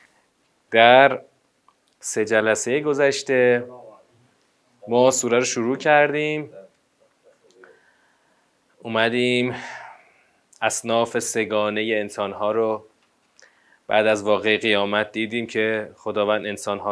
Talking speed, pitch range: 80 wpm, 105-125 Hz